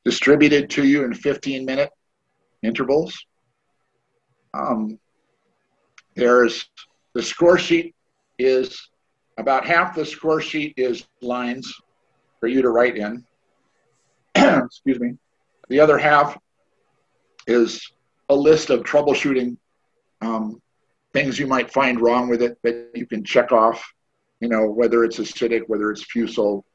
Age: 50-69